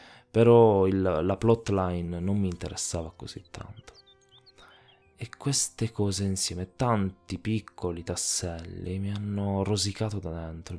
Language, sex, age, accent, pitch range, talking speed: Italian, male, 20-39, native, 85-105 Hz, 115 wpm